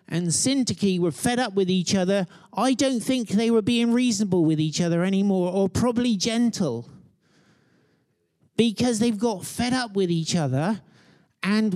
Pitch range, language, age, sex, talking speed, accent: 160-215 Hz, English, 50-69, male, 160 wpm, British